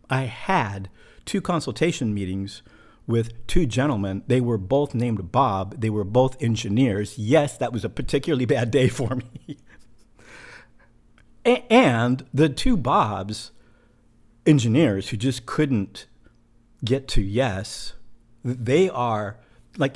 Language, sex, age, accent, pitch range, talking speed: English, male, 50-69, American, 105-130 Hz, 120 wpm